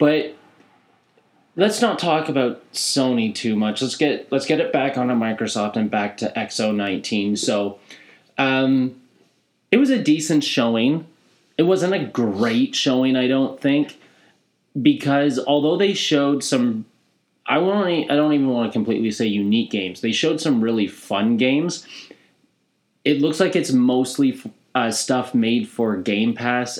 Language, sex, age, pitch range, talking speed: English, male, 30-49, 110-145 Hz, 155 wpm